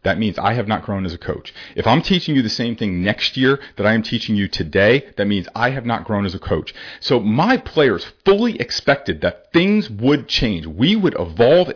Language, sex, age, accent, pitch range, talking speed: English, male, 40-59, American, 110-140 Hz, 230 wpm